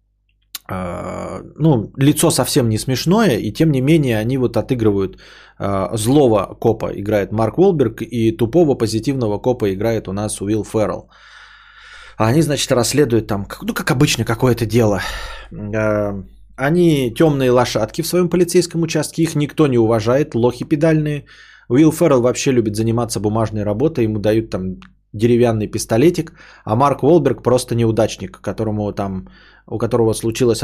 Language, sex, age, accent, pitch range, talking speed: Russian, male, 20-39, native, 105-140 Hz, 140 wpm